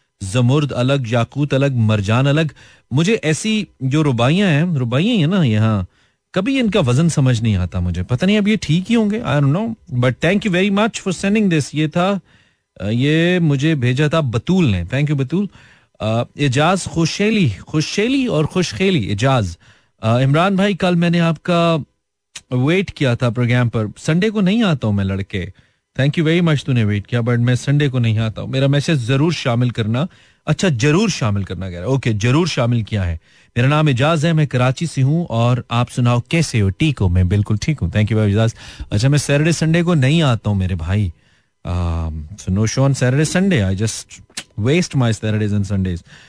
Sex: male